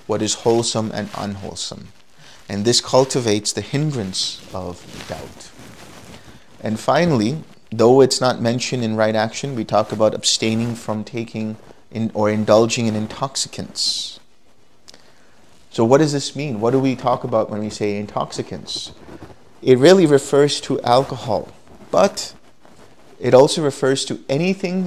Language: English